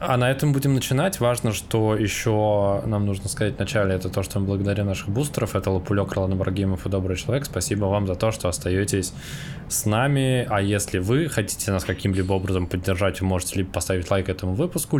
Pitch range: 95-110 Hz